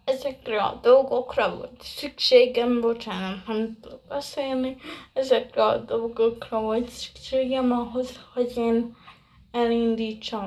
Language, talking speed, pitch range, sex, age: Hungarian, 105 wpm, 225-260 Hz, female, 20-39